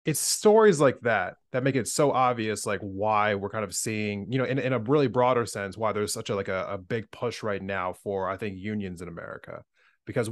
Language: English